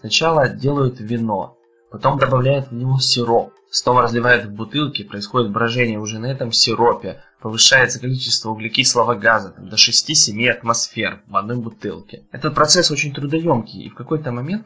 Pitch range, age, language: 115-145 Hz, 20-39, Russian